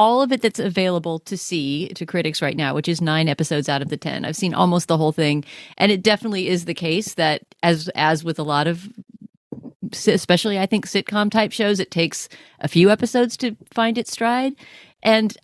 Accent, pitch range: American, 160-215 Hz